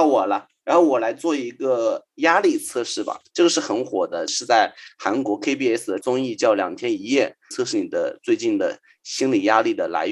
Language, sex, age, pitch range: Chinese, male, 30-49, 290-330 Hz